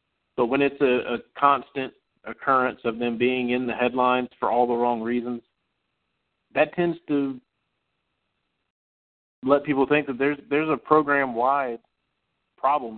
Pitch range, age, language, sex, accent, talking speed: 120-140 Hz, 40-59, English, male, American, 145 wpm